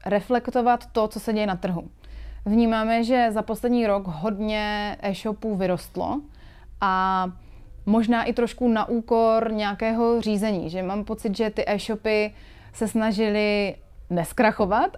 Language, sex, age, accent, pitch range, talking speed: Czech, female, 20-39, native, 185-225 Hz, 130 wpm